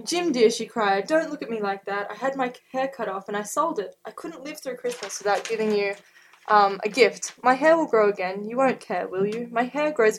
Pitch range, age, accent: 200-275 Hz, 10-29, Australian